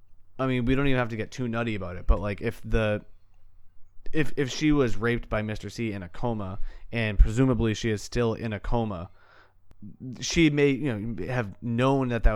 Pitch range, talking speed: 95-115 Hz, 210 wpm